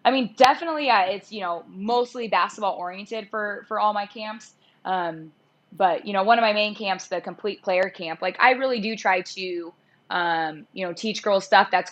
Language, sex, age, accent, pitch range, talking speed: English, female, 20-39, American, 175-210 Hz, 205 wpm